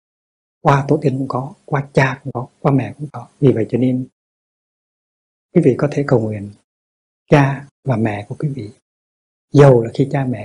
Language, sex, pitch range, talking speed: Vietnamese, male, 115-140 Hz, 195 wpm